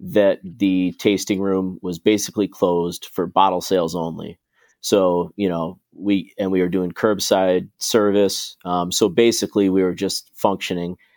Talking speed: 150 wpm